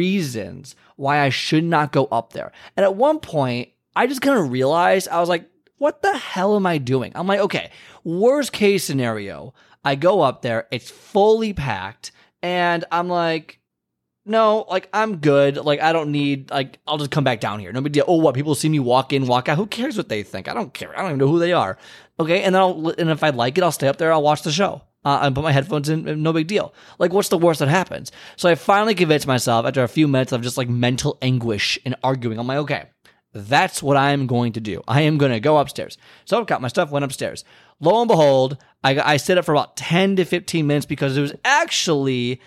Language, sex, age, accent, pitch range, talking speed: English, male, 20-39, American, 125-170 Hz, 240 wpm